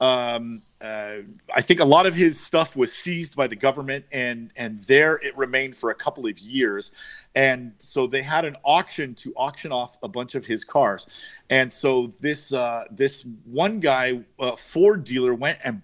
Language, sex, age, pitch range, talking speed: English, male, 40-59, 125-160 Hz, 190 wpm